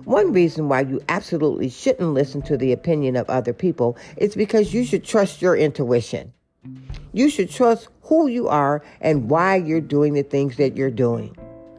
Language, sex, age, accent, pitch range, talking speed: English, female, 50-69, American, 130-175 Hz, 180 wpm